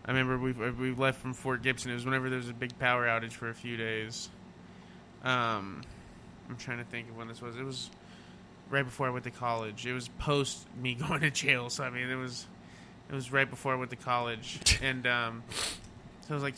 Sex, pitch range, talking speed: male, 125-145 Hz, 230 wpm